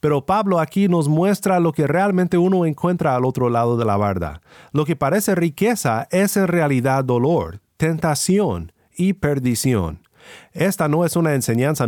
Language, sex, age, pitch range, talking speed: Spanish, male, 40-59, 125-175 Hz, 160 wpm